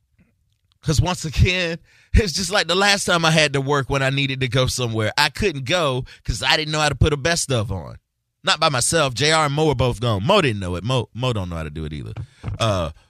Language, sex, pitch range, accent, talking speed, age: English, male, 115-145 Hz, American, 255 wpm, 30-49